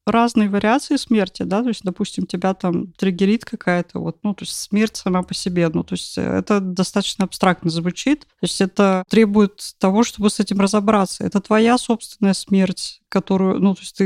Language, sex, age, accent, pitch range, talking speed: Russian, female, 20-39, native, 180-215 Hz, 185 wpm